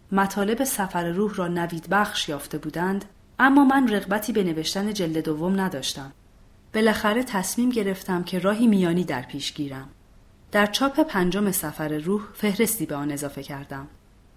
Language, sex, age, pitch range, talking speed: Persian, female, 30-49, 150-210 Hz, 145 wpm